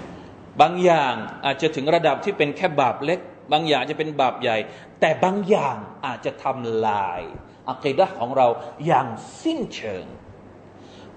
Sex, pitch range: male, 125-180 Hz